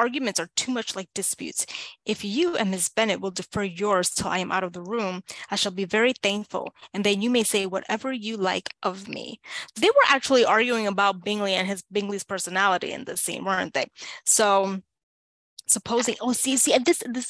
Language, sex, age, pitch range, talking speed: English, female, 20-39, 195-235 Hz, 200 wpm